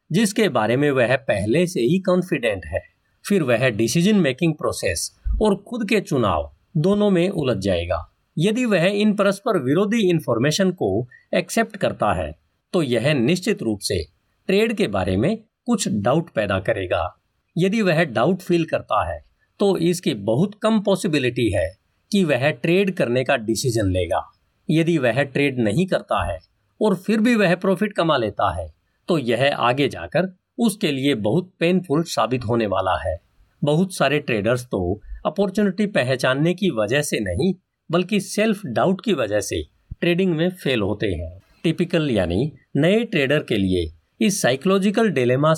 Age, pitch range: 50-69, 125-195 Hz